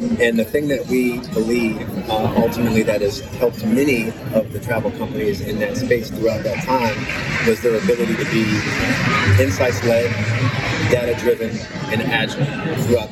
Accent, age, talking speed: American, 30-49, 145 wpm